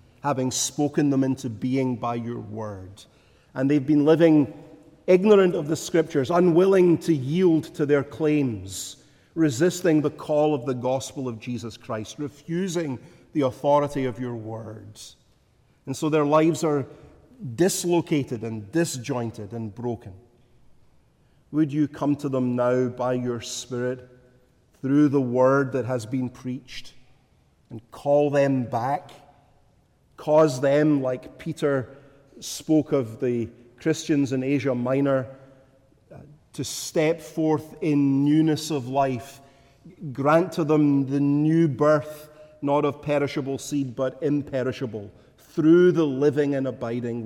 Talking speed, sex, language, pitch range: 130 wpm, male, English, 120-150 Hz